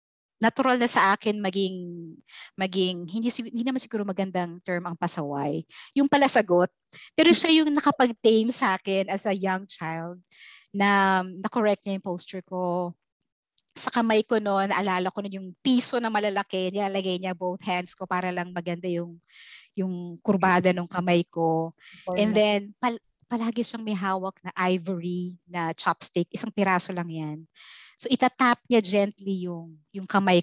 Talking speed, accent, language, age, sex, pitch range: 155 wpm, native, Filipino, 20-39, female, 180-225 Hz